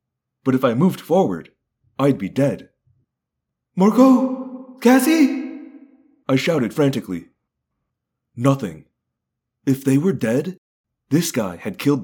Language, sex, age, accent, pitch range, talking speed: English, male, 30-49, American, 125-190 Hz, 110 wpm